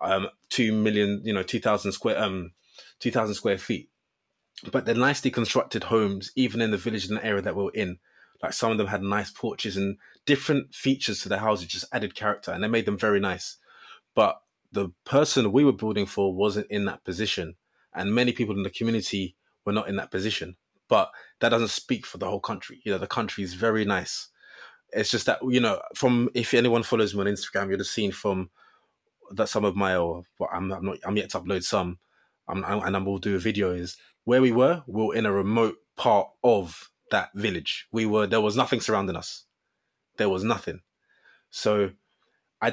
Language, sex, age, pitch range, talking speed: English, male, 20-39, 100-120 Hz, 210 wpm